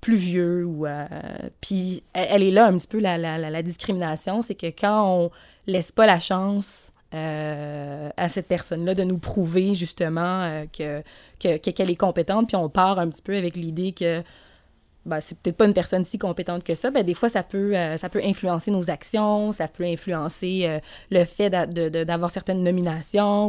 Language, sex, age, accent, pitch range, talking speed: French, female, 20-39, Canadian, 170-200 Hz, 200 wpm